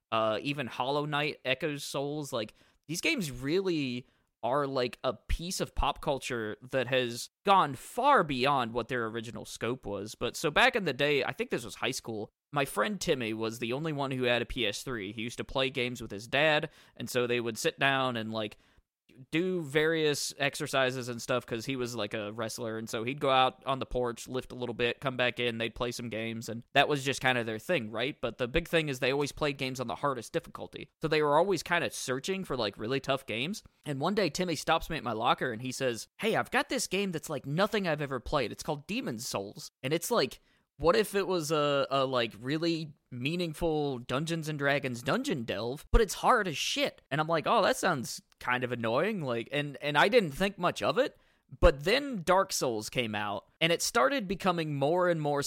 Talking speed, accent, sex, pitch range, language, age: 225 wpm, American, male, 120-160 Hz, English, 20-39